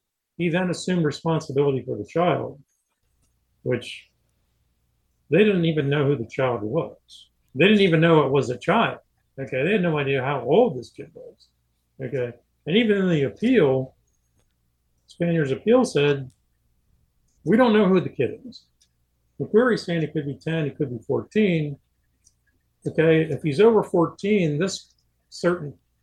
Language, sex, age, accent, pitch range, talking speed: English, male, 50-69, American, 115-165 Hz, 155 wpm